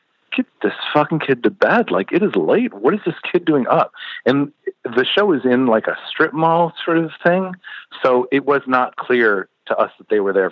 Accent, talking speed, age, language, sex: American, 220 wpm, 40-59, English, male